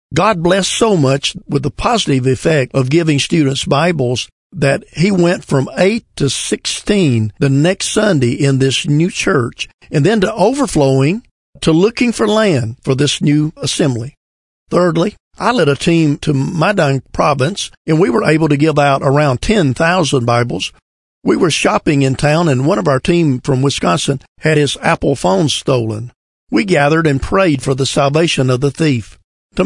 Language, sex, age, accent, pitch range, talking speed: English, male, 50-69, American, 130-165 Hz, 170 wpm